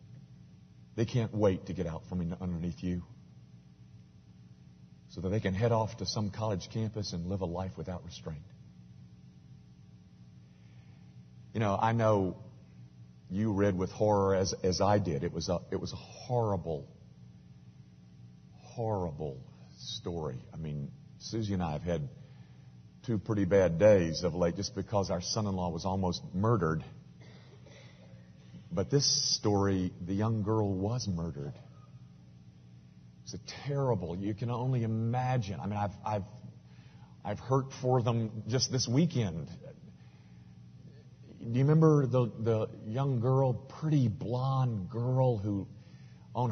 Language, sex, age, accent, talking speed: English, male, 50-69, American, 135 wpm